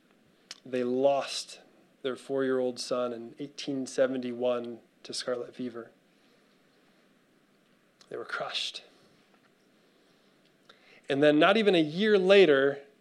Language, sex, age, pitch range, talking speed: English, male, 20-39, 130-155 Hz, 90 wpm